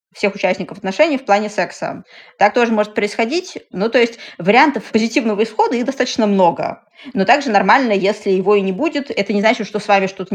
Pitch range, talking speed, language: 185-225 Hz, 195 wpm, Russian